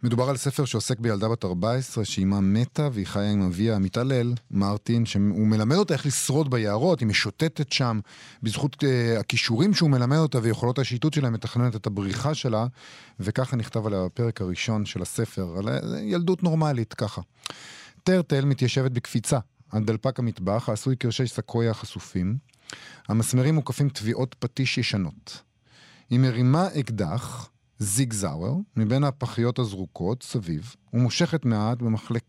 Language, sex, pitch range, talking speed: Hebrew, male, 110-135 Hz, 140 wpm